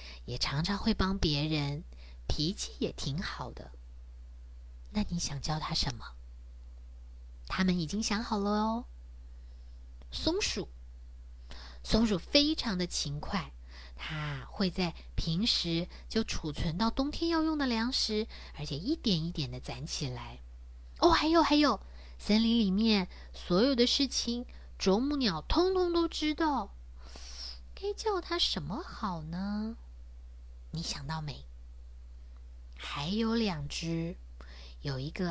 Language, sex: Chinese, female